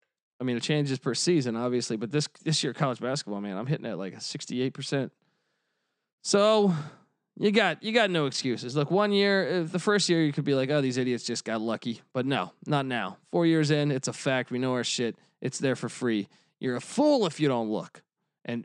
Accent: American